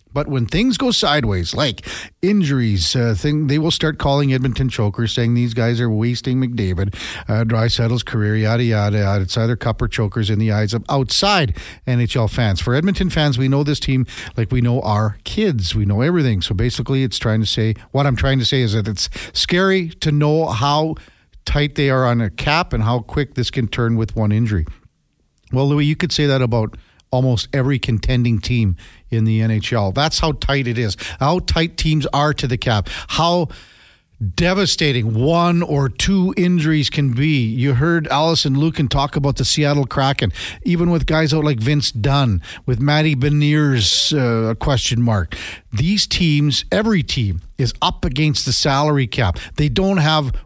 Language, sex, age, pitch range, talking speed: English, male, 50-69, 110-150 Hz, 190 wpm